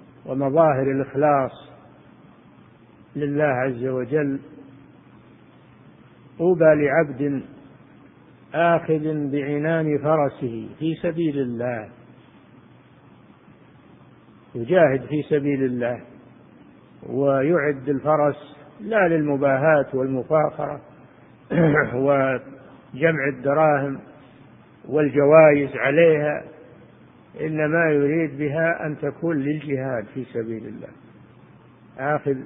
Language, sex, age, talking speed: Arabic, male, 50-69, 65 wpm